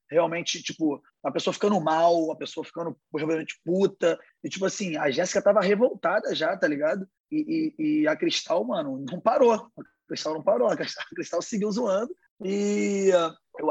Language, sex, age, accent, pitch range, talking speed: Portuguese, male, 20-39, Brazilian, 165-245 Hz, 175 wpm